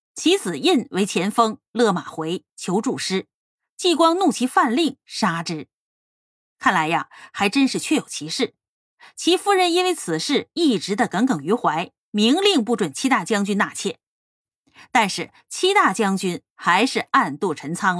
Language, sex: Chinese, female